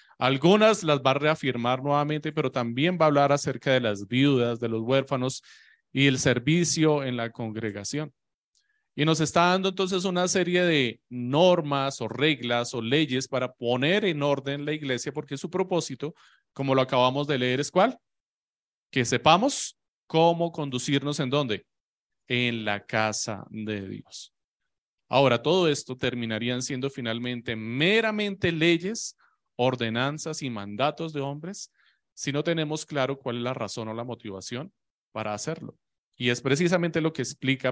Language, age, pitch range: Spanish, 30-49, 120-155 Hz